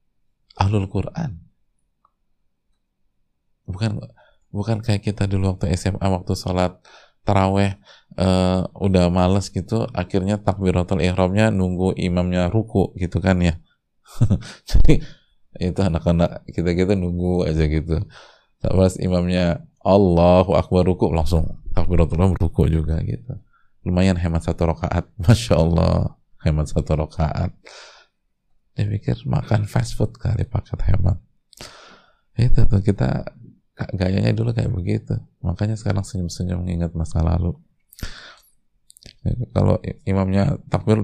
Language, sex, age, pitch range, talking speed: Indonesian, male, 20-39, 85-105 Hz, 115 wpm